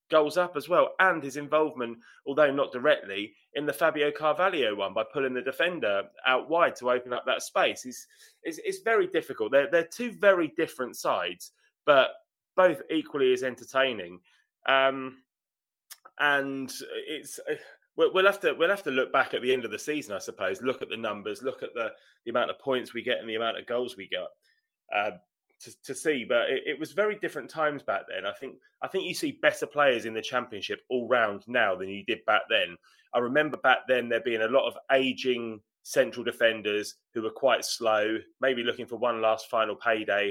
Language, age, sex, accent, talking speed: English, 20-39, male, British, 200 wpm